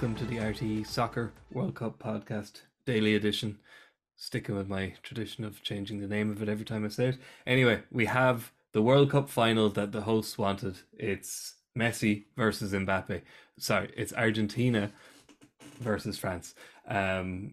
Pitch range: 100-125 Hz